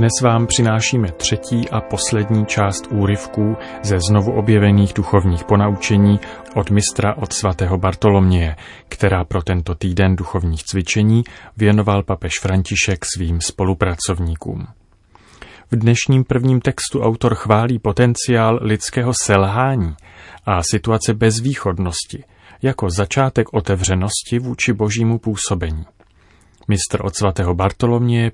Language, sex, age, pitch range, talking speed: Czech, male, 30-49, 95-115 Hz, 110 wpm